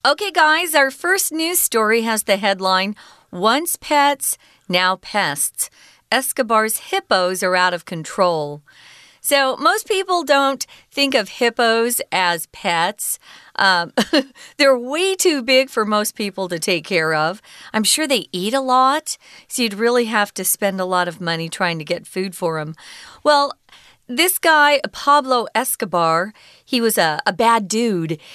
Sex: female